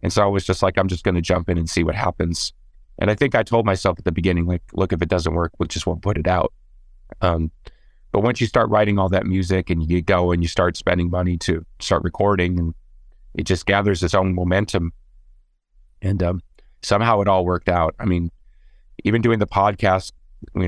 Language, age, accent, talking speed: English, 30-49, American, 225 wpm